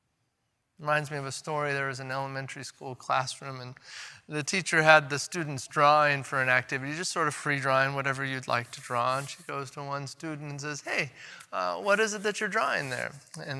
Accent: American